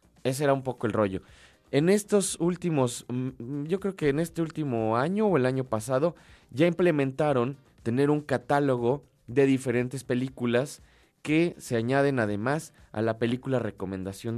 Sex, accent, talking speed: male, Mexican, 150 wpm